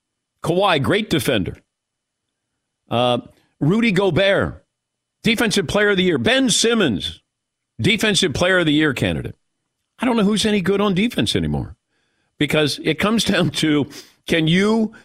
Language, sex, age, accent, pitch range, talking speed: English, male, 50-69, American, 130-200 Hz, 140 wpm